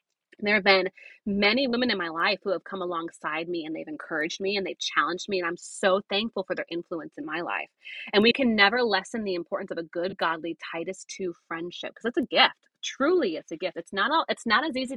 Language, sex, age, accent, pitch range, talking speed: English, female, 30-49, American, 170-235 Hz, 245 wpm